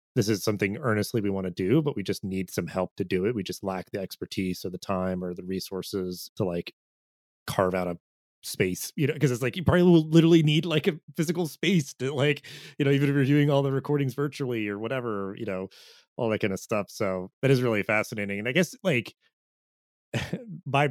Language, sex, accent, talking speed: English, male, American, 225 wpm